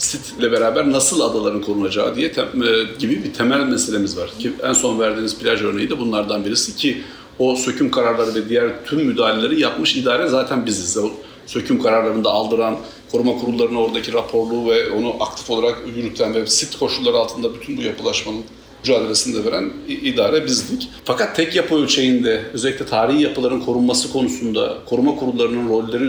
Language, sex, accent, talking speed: Turkish, male, native, 165 wpm